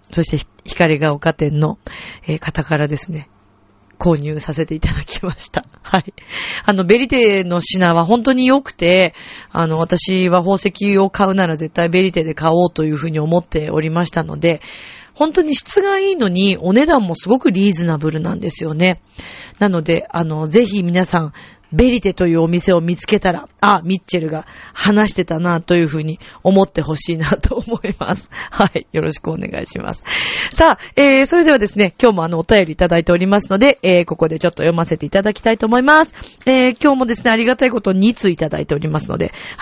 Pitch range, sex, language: 160-210 Hz, female, Japanese